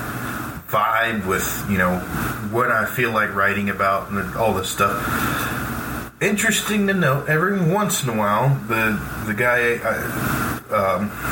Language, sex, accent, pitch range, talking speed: English, male, American, 105-130 Hz, 145 wpm